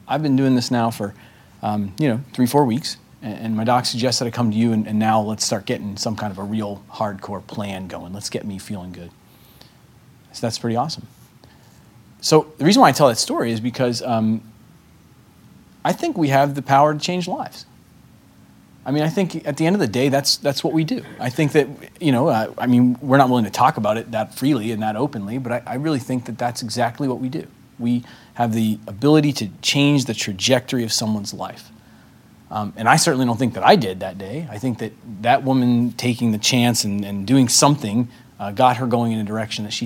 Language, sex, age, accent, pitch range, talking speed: English, male, 30-49, American, 110-135 Hz, 230 wpm